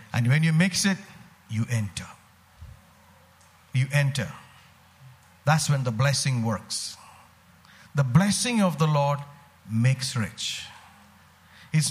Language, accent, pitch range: English, Indian, 140-195 Hz